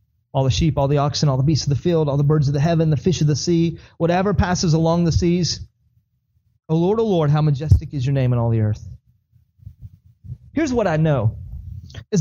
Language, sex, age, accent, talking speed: English, male, 30-49, American, 225 wpm